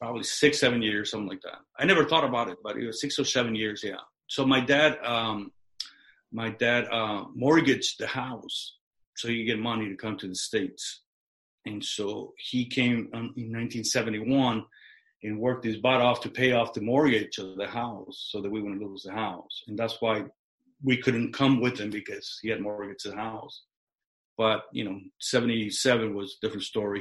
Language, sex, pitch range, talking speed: English, male, 105-135 Hz, 195 wpm